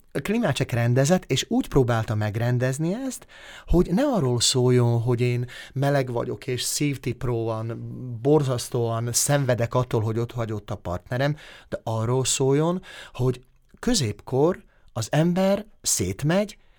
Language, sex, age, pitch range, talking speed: Hungarian, male, 30-49, 120-150 Hz, 115 wpm